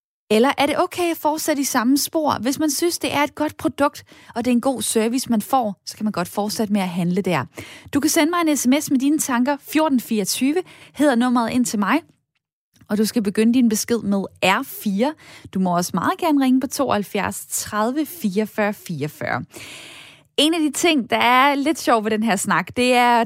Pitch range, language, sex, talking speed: 205-275 Hz, Danish, female, 210 wpm